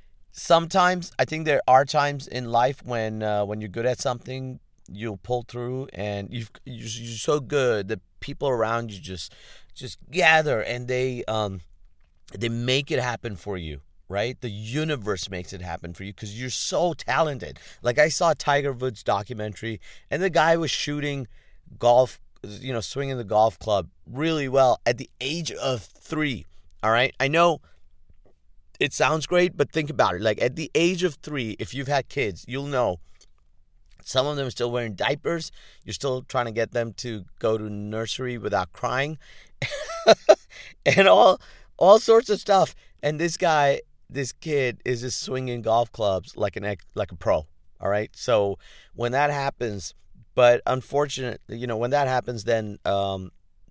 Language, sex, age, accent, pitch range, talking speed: English, male, 30-49, American, 100-135 Hz, 175 wpm